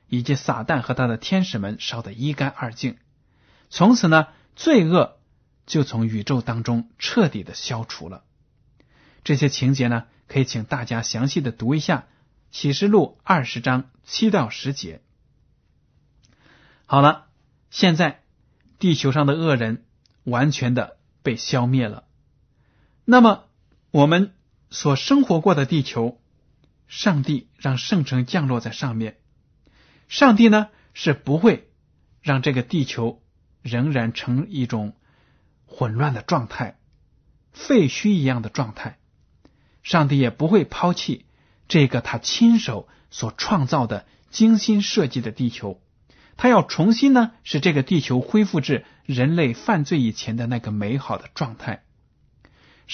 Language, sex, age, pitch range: Chinese, male, 20-39, 120-170 Hz